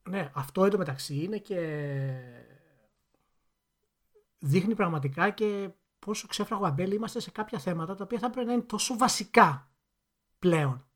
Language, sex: Greek, male